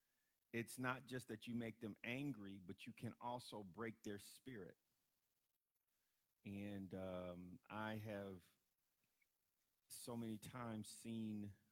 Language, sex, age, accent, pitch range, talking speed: English, male, 50-69, American, 105-140 Hz, 120 wpm